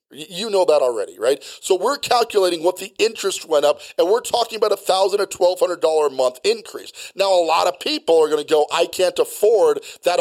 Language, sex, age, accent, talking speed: English, male, 40-59, American, 205 wpm